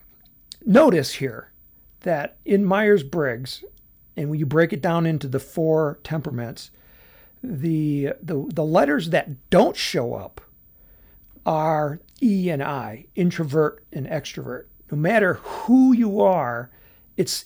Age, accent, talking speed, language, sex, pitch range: 60-79, American, 125 wpm, English, male, 135-175 Hz